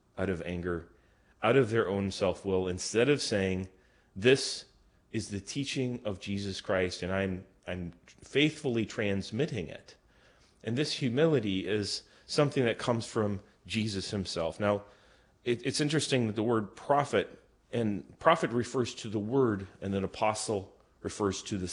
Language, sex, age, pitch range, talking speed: English, male, 30-49, 95-115 Hz, 150 wpm